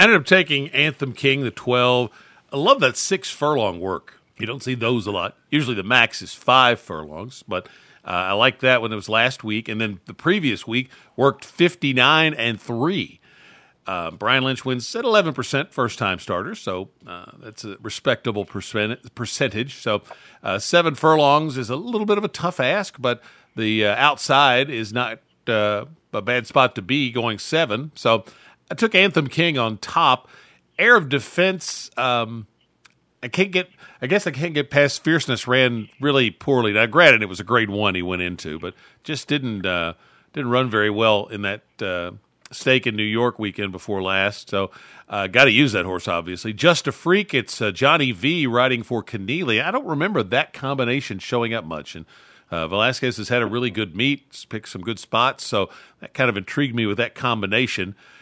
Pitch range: 105-140 Hz